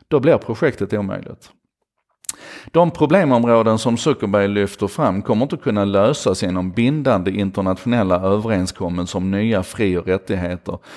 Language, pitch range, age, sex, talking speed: Swedish, 95-125 Hz, 30-49, male, 125 wpm